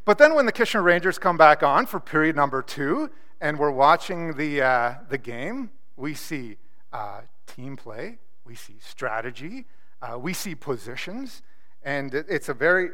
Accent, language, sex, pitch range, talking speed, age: American, English, male, 135-190 Hz, 165 wpm, 40-59